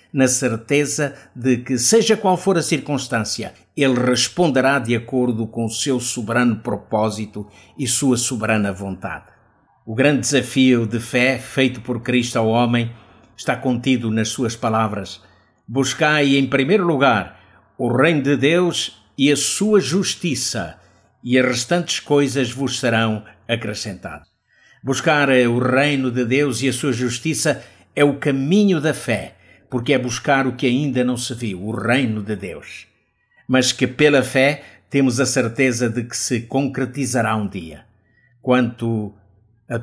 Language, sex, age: Portuguese, male, 50-69